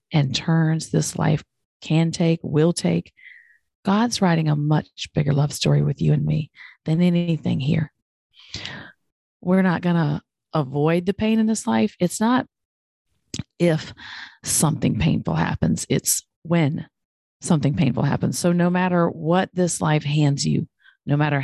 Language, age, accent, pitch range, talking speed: English, 40-59, American, 140-175 Hz, 145 wpm